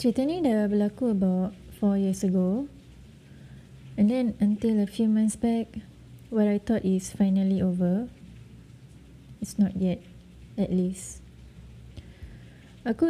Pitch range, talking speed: 190-220 Hz, 120 wpm